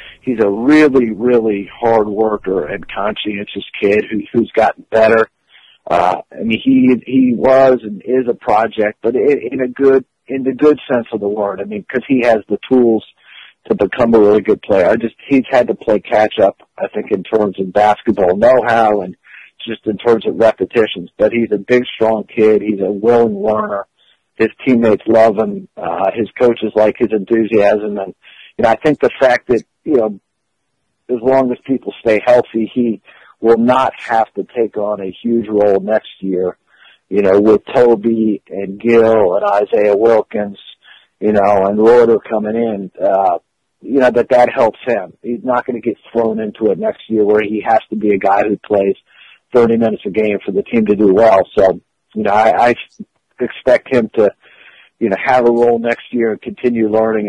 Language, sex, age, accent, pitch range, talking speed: English, male, 50-69, American, 105-120 Hz, 195 wpm